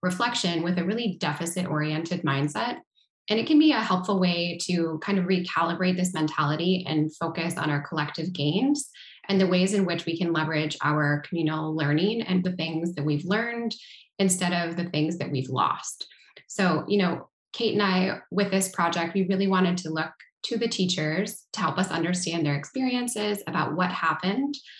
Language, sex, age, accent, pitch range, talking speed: English, female, 20-39, American, 165-195 Hz, 180 wpm